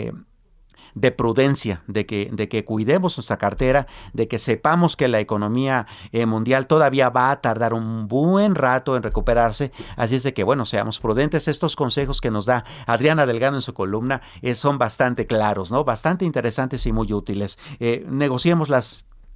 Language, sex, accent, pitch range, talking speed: Spanish, male, Mexican, 110-145 Hz, 170 wpm